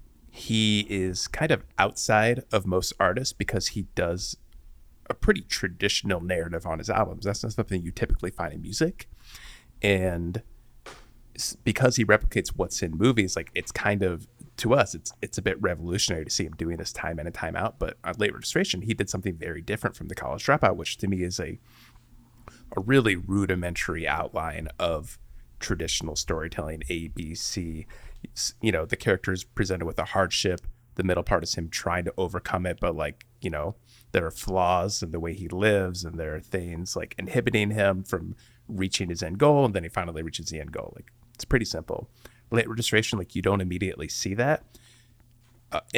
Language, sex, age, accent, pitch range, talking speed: English, male, 30-49, American, 85-110 Hz, 190 wpm